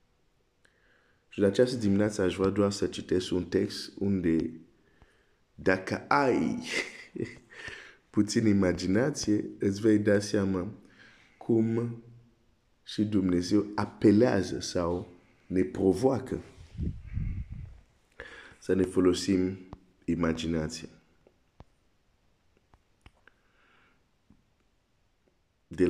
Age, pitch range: 50-69, 85-105 Hz